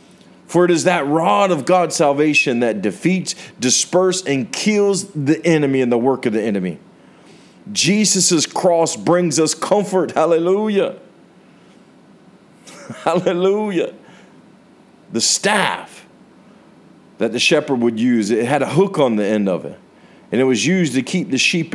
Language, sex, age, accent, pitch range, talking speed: English, male, 40-59, American, 130-175 Hz, 145 wpm